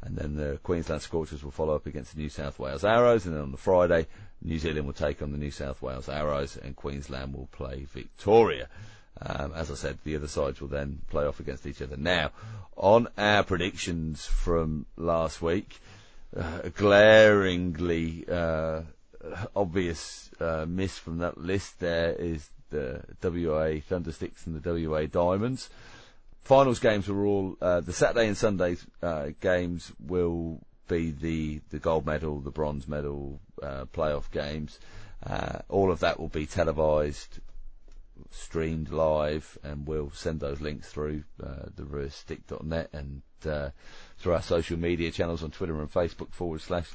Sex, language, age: male, English, 30-49